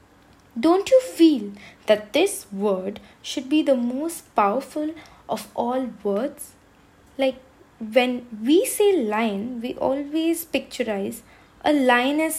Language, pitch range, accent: Tamil, 225-305 Hz, native